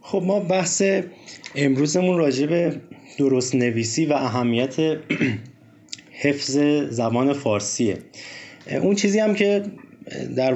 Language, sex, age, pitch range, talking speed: Persian, male, 30-49, 115-150 Hz, 95 wpm